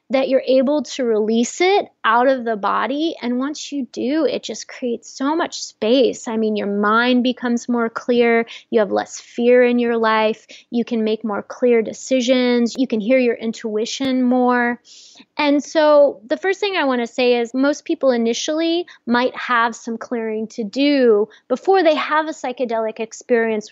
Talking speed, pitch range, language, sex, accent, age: 180 wpm, 230-280 Hz, English, female, American, 20-39